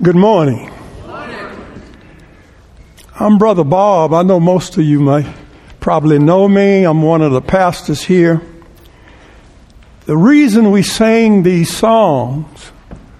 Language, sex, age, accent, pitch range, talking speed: English, male, 60-79, American, 160-225 Hz, 120 wpm